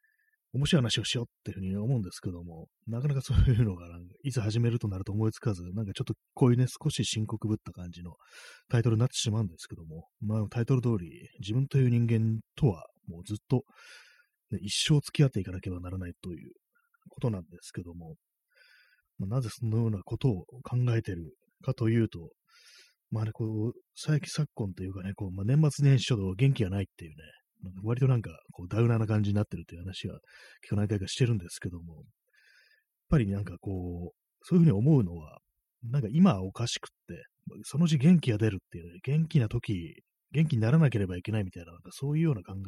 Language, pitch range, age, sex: Japanese, 95-135 Hz, 30-49, male